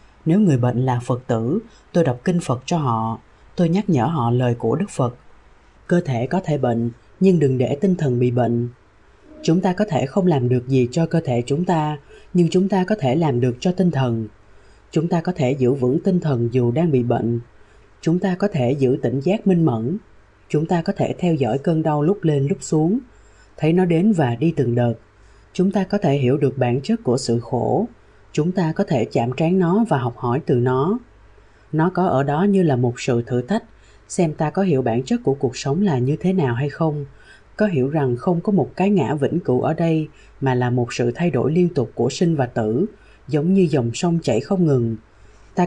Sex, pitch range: female, 120-175 Hz